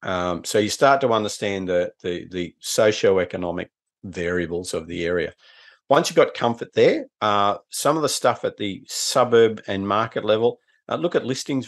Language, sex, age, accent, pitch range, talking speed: English, male, 50-69, Australian, 95-130 Hz, 175 wpm